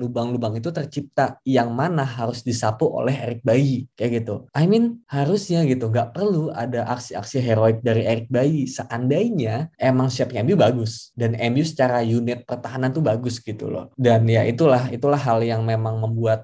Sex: male